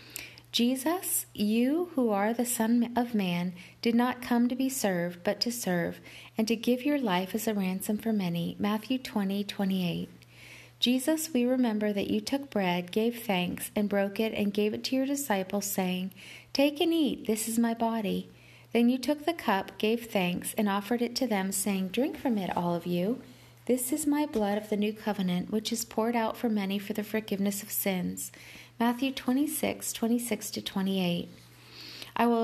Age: 40-59